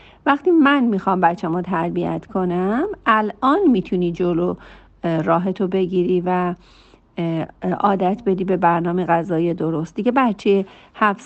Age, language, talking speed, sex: 50-69, Persian, 125 wpm, female